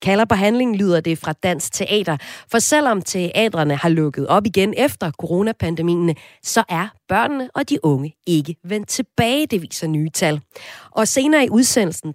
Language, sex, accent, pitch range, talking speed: Danish, female, native, 165-230 Hz, 160 wpm